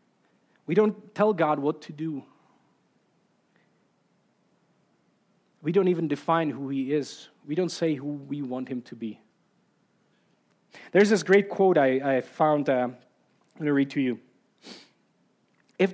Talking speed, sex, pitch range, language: 140 wpm, male, 140-180 Hz, English